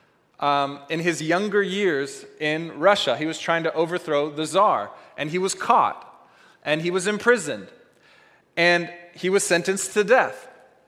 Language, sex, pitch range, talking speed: English, male, 140-185 Hz, 155 wpm